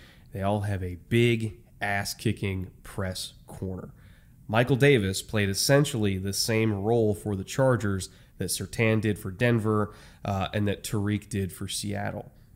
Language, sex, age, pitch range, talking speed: English, male, 20-39, 100-120 Hz, 145 wpm